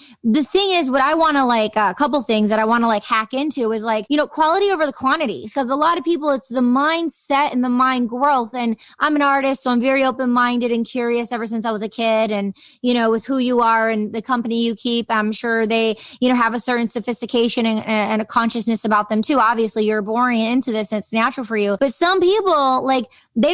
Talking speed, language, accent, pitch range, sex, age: 245 wpm, English, American, 240-300 Hz, female, 20-39